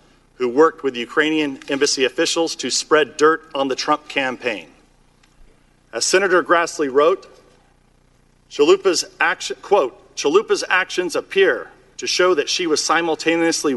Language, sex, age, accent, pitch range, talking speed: English, male, 40-59, American, 150-180 Hz, 120 wpm